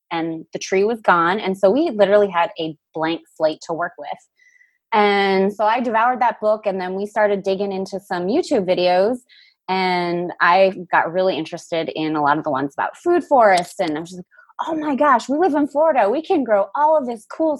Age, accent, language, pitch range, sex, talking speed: 20-39, American, English, 180-245 Hz, female, 215 wpm